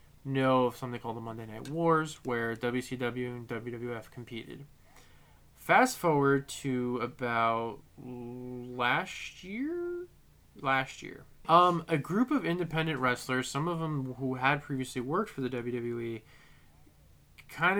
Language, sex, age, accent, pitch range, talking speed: English, male, 20-39, American, 120-140 Hz, 130 wpm